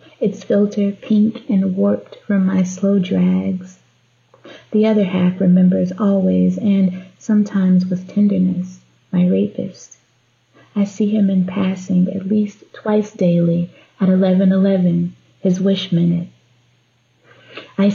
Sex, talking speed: female, 115 wpm